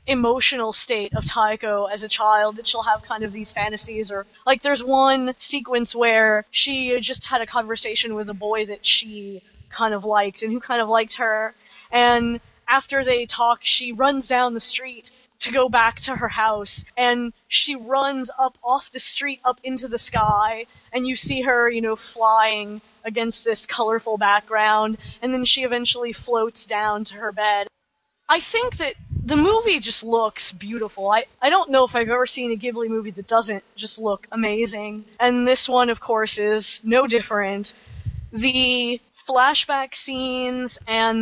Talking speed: 175 wpm